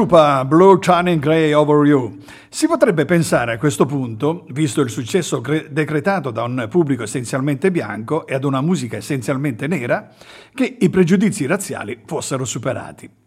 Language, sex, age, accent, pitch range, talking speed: Italian, male, 50-69, native, 135-185 Hz, 150 wpm